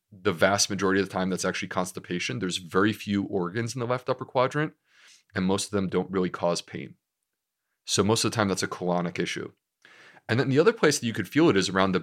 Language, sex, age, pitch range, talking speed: English, male, 30-49, 95-120 Hz, 240 wpm